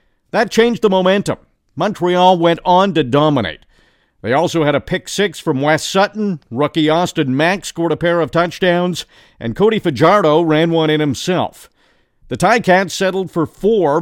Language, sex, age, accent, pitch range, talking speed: English, male, 50-69, American, 145-190 Hz, 160 wpm